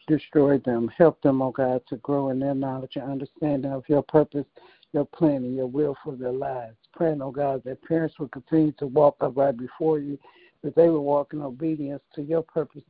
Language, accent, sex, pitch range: English, American, male, 130-150 Hz